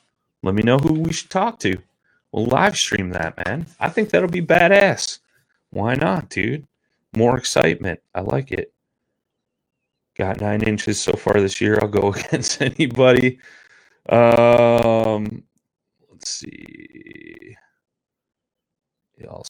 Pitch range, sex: 105-160 Hz, male